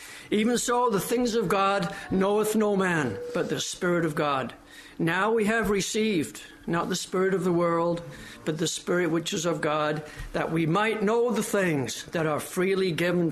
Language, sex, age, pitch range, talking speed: English, male, 60-79, 170-220 Hz, 185 wpm